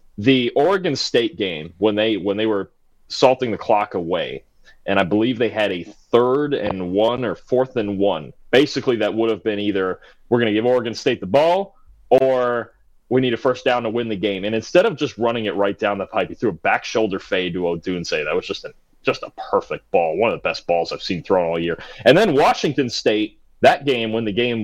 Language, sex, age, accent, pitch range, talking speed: English, male, 30-49, American, 105-130 Hz, 235 wpm